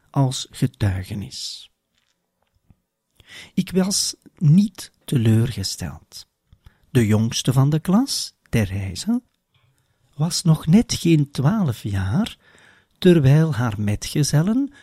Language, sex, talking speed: Dutch, male, 85 wpm